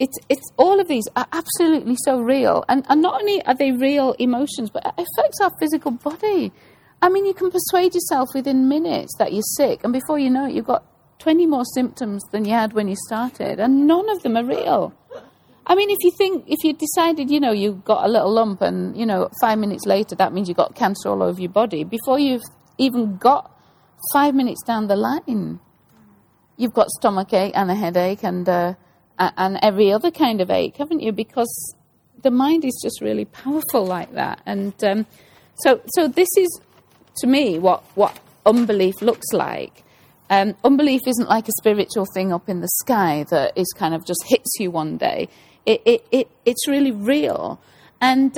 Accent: British